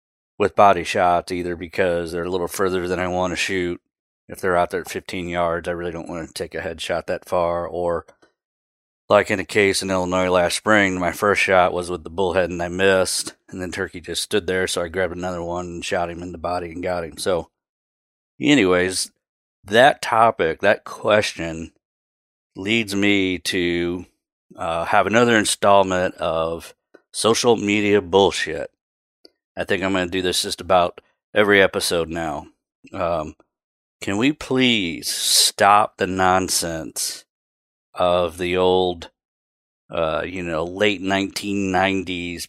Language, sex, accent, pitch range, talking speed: English, male, American, 85-95 Hz, 160 wpm